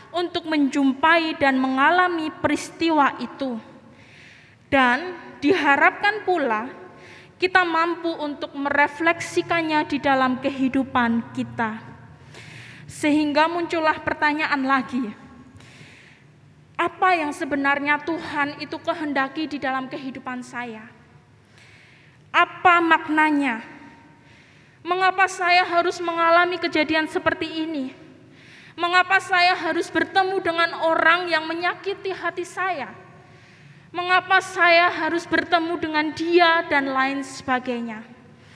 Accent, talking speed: native, 90 wpm